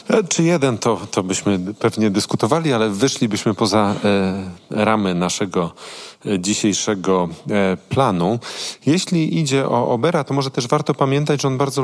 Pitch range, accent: 105-135 Hz, native